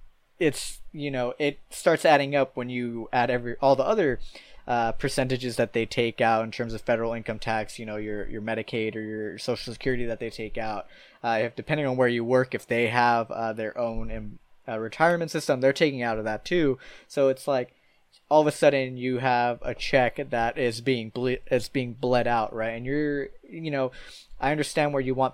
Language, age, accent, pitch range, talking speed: English, 20-39, American, 115-135 Hz, 215 wpm